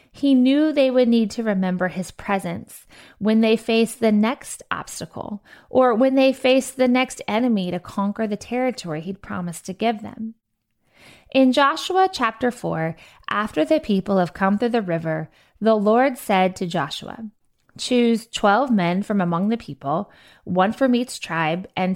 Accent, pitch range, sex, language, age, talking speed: American, 185-240 Hz, female, English, 20-39, 165 wpm